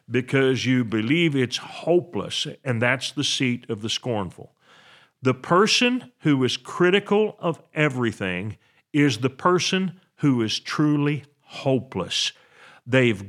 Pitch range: 125-185 Hz